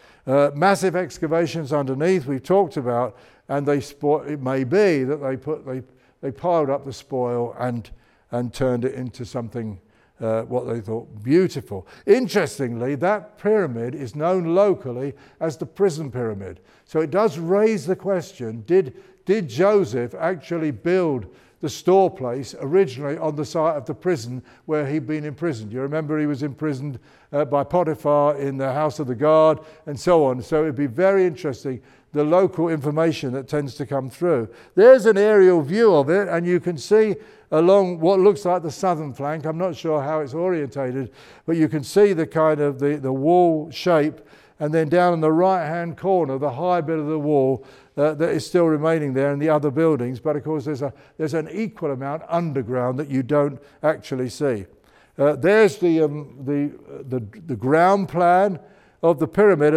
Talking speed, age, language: 185 wpm, 60-79, English